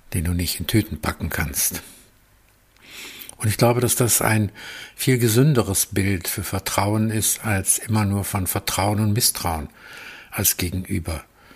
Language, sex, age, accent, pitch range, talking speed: German, male, 50-69, German, 100-120 Hz, 145 wpm